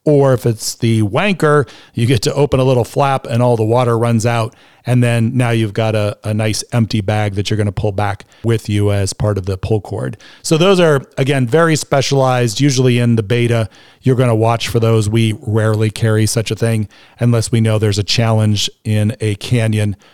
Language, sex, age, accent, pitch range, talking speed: English, male, 40-59, American, 105-130 Hz, 220 wpm